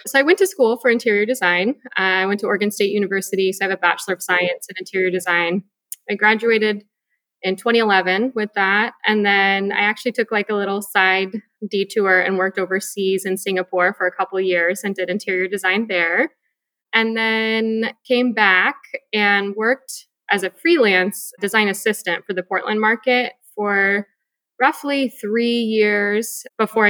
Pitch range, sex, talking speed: 190-230 Hz, female, 170 wpm